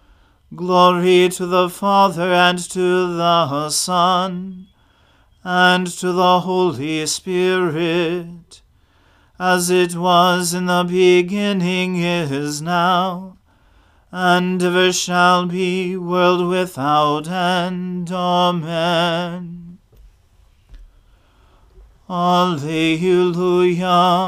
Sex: male